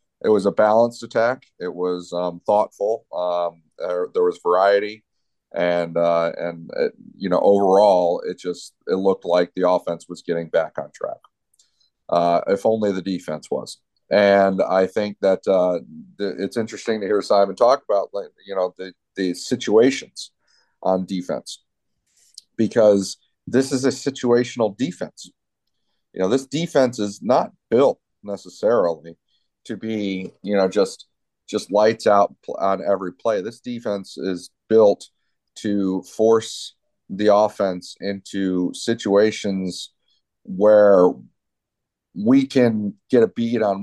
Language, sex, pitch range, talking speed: English, male, 90-105 Hz, 140 wpm